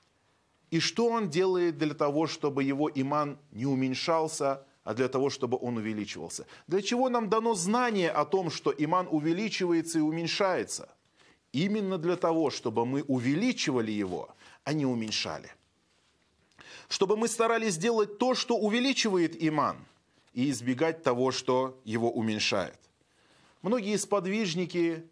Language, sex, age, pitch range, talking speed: Russian, male, 30-49, 135-200 Hz, 130 wpm